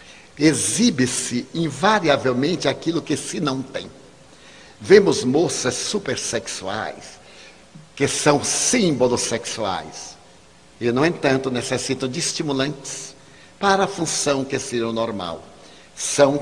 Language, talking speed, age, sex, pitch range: Portuguese, 100 wpm, 60-79, male, 115-170 Hz